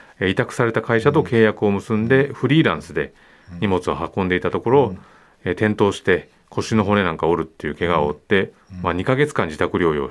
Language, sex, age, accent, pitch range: Japanese, male, 30-49, native, 90-115 Hz